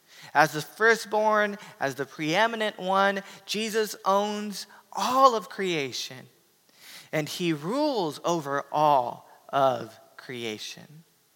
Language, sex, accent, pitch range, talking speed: English, male, American, 150-210 Hz, 100 wpm